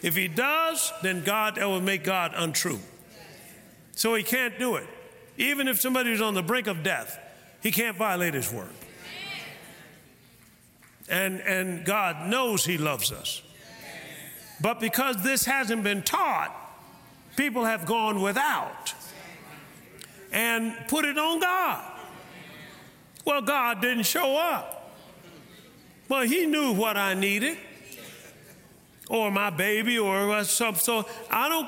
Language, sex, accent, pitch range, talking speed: English, male, American, 195-265 Hz, 130 wpm